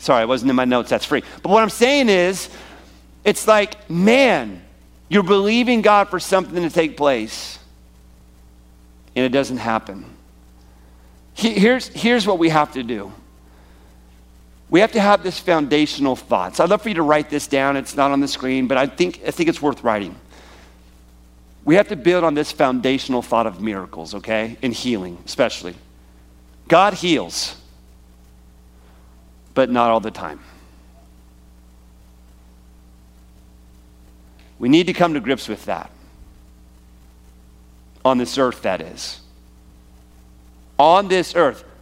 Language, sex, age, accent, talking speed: English, male, 40-59, American, 145 wpm